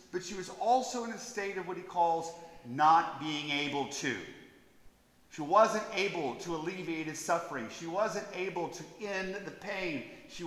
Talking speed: 170 wpm